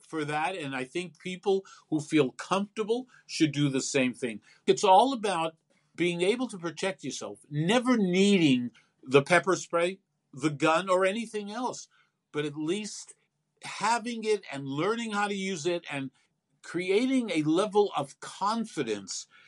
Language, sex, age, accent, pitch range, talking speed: English, male, 50-69, American, 145-200 Hz, 150 wpm